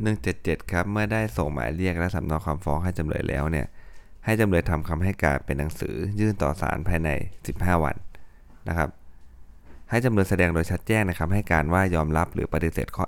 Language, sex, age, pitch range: Thai, male, 20-39, 75-95 Hz